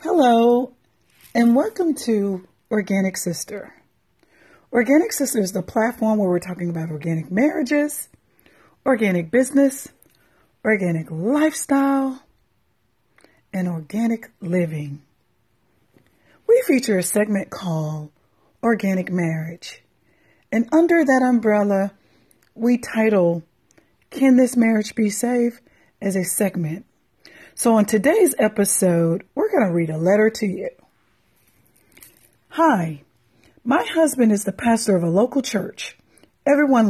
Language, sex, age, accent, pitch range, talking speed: English, female, 40-59, American, 180-260 Hz, 110 wpm